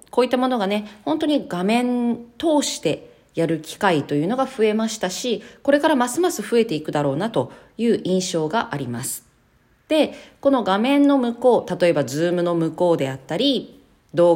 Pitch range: 160-265 Hz